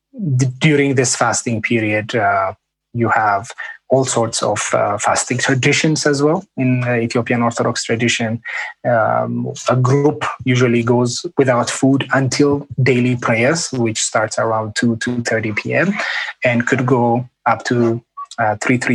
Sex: male